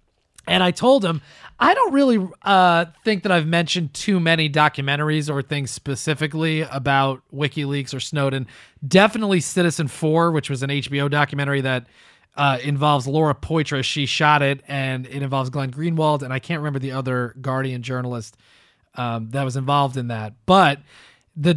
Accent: American